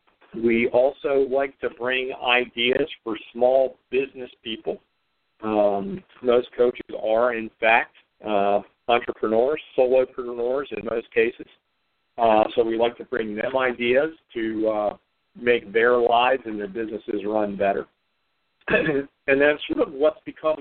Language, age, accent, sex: English, 50-69, American, male